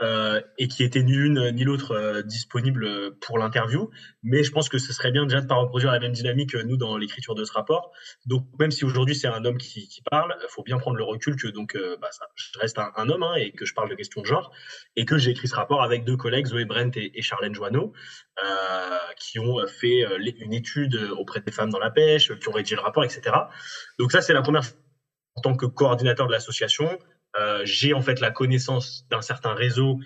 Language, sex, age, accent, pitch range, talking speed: French, male, 20-39, French, 115-140 Hz, 245 wpm